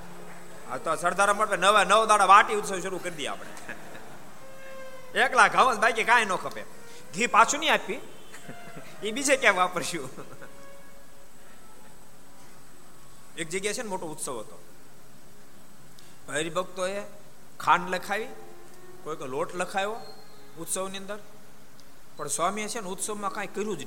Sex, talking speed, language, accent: male, 130 wpm, Gujarati, native